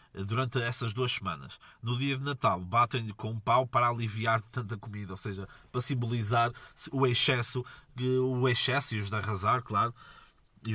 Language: Portuguese